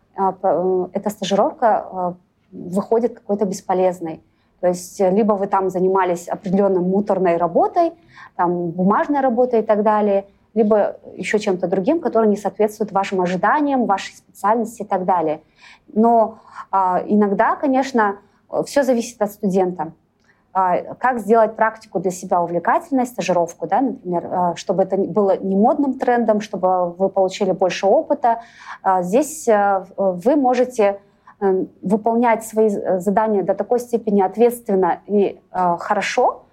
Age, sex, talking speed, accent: 20-39, female, 120 wpm, native